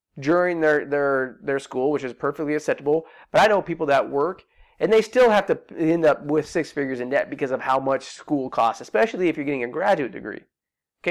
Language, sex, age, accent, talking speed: English, male, 30-49, American, 220 wpm